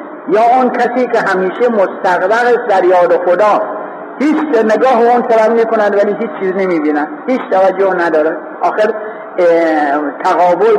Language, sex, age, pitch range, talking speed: Persian, male, 60-79, 175-235 Hz, 140 wpm